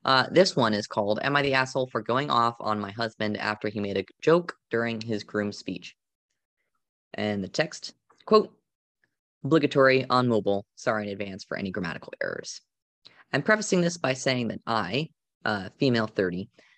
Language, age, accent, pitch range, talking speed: English, 20-39, American, 105-135 Hz, 170 wpm